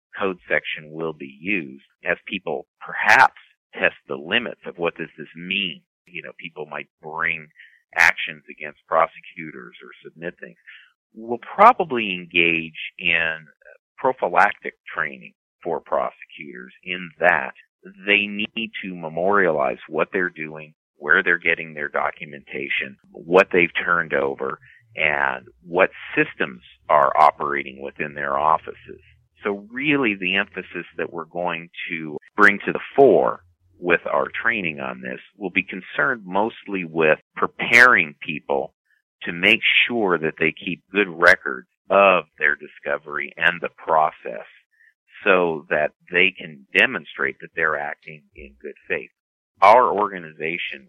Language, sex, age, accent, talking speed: English, male, 50-69, American, 130 wpm